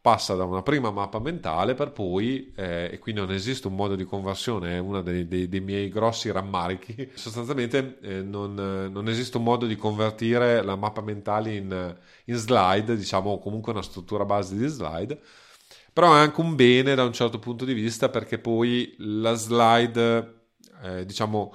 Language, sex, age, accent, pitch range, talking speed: Italian, male, 30-49, native, 95-115 Hz, 180 wpm